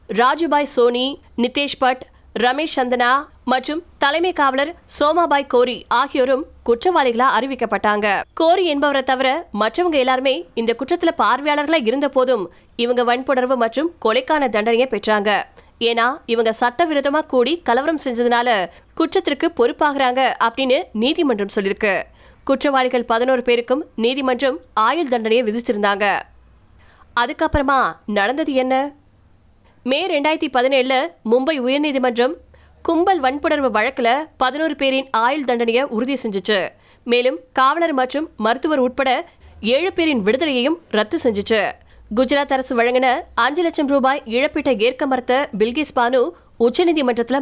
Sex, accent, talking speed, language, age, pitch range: female, native, 95 wpm, Tamil, 20-39, 240-295 Hz